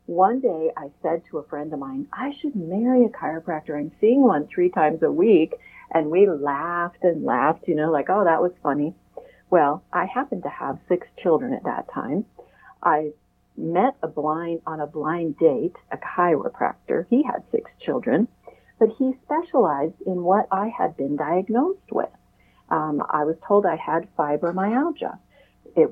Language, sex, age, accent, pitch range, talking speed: English, female, 40-59, American, 160-250 Hz, 175 wpm